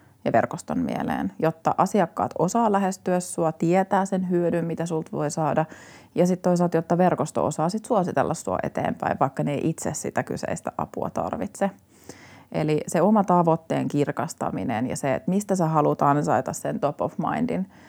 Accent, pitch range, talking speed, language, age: native, 140-175 Hz, 160 wpm, Finnish, 30-49